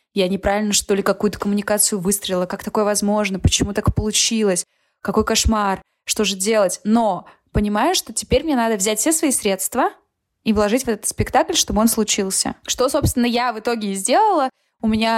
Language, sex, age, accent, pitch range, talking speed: Russian, female, 20-39, native, 210-255 Hz, 180 wpm